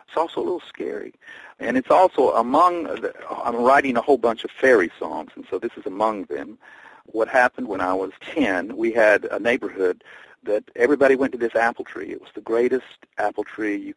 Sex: male